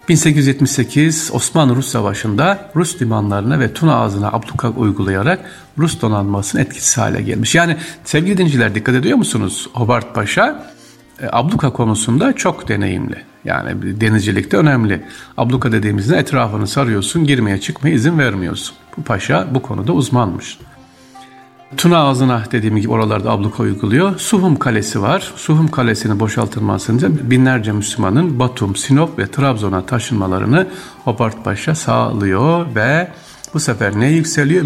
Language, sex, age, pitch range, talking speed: Turkish, male, 50-69, 105-145 Hz, 125 wpm